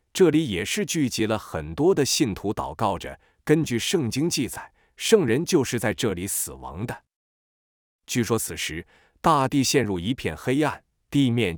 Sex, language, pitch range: male, Chinese, 105-150 Hz